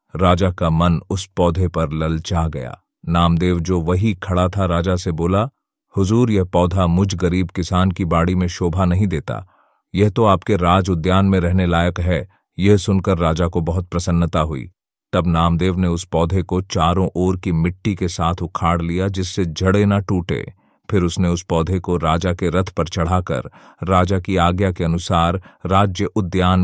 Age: 40-59